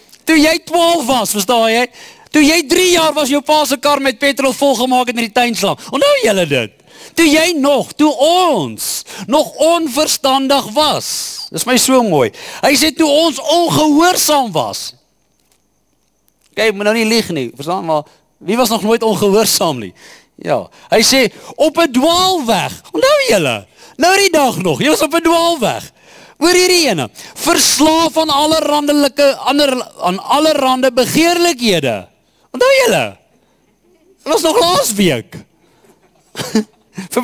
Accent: Dutch